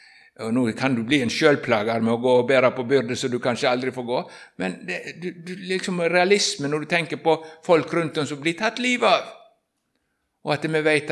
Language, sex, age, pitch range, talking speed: English, male, 60-79, 120-160 Hz, 255 wpm